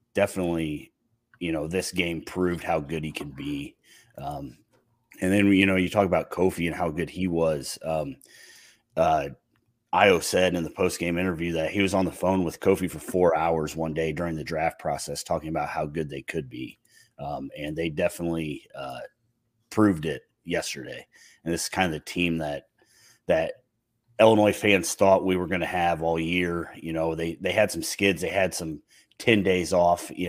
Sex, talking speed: male, 195 wpm